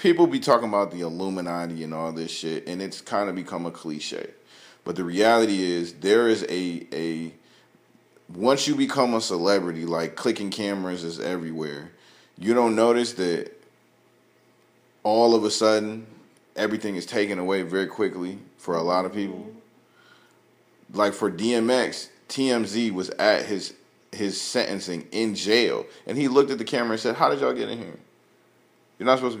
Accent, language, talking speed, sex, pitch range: American, English, 170 wpm, male, 90-115 Hz